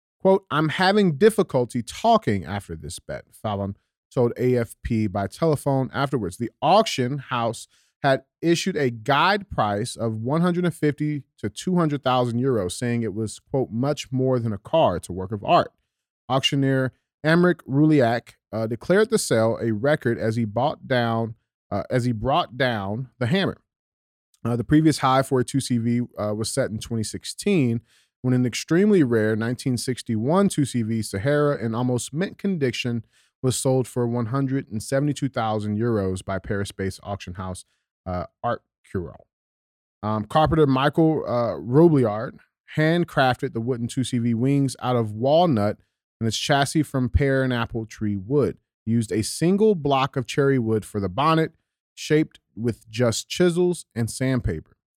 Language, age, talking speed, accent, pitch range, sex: English, 30-49, 145 wpm, American, 110-145 Hz, male